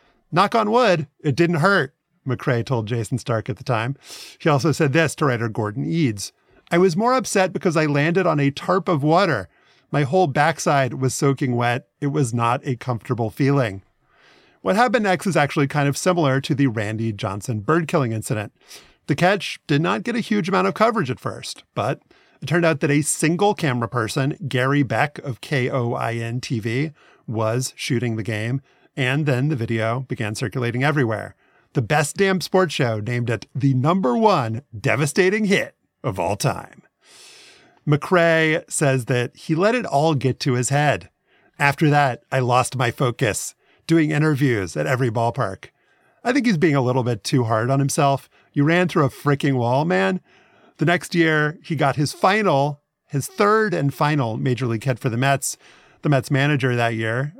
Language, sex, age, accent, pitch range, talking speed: English, male, 40-59, American, 125-170 Hz, 180 wpm